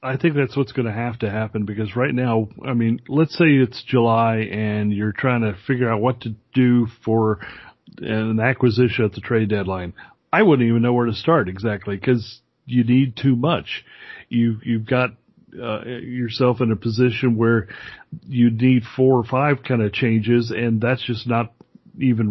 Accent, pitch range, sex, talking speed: American, 110-130 Hz, male, 190 wpm